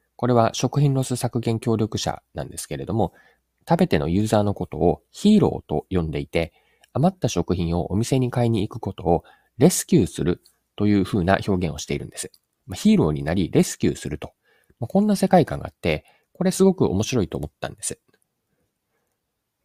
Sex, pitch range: male, 85-125 Hz